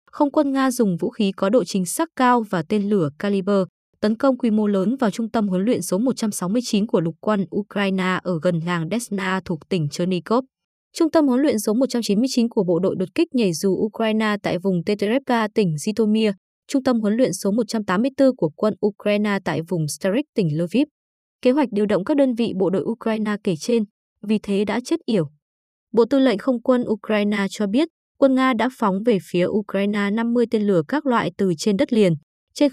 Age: 20-39